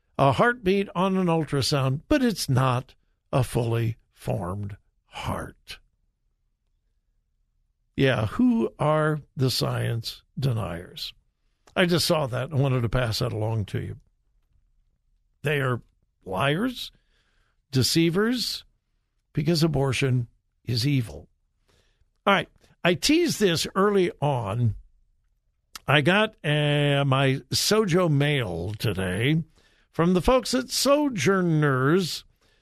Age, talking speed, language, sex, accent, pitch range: 60-79, 105 wpm, English, male, American, 120-170 Hz